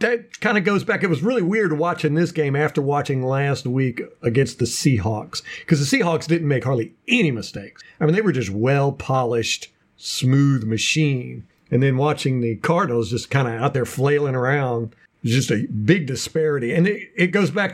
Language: English